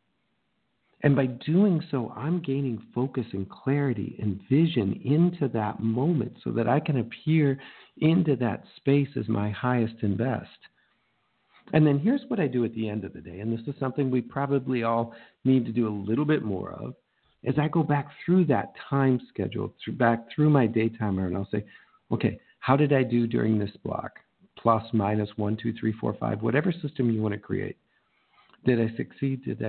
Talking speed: 190 wpm